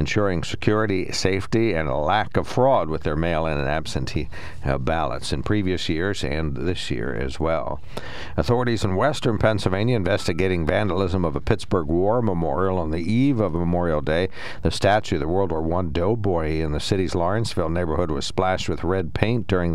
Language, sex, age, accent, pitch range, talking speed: English, male, 60-79, American, 80-100 Hz, 180 wpm